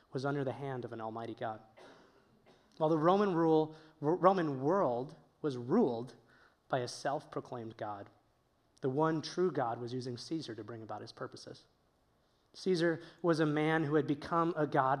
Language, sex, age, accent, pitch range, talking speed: English, male, 20-39, American, 130-165 Hz, 160 wpm